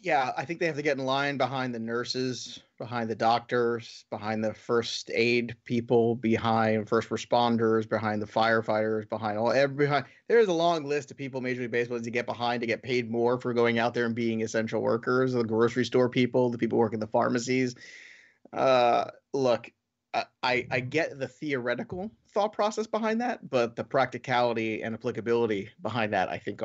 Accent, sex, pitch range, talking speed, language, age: American, male, 115-130 Hz, 190 wpm, English, 30-49